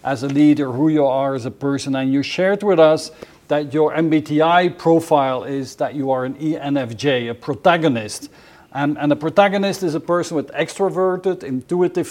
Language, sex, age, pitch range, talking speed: English, male, 50-69, 140-180 Hz, 180 wpm